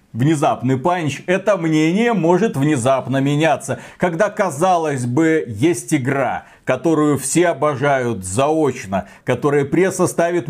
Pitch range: 150-200 Hz